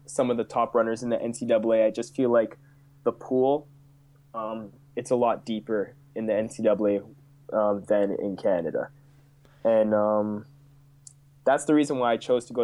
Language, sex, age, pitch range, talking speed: English, male, 20-39, 110-140 Hz, 170 wpm